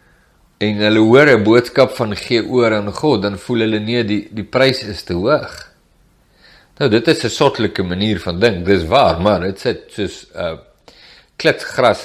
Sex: male